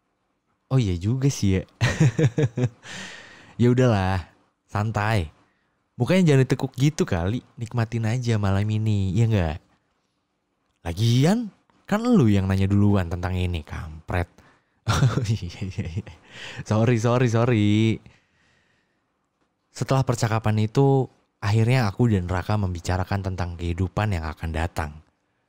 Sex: male